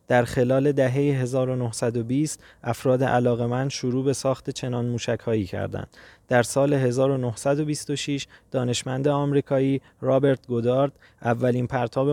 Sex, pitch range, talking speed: male, 115-140 Hz, 105 wpm